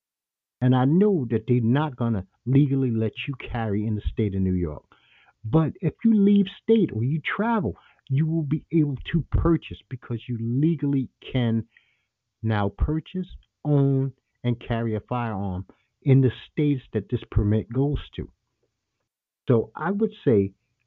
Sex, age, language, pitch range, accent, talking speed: male, 50-69, English, 115-150 Hz, American, 160 wpm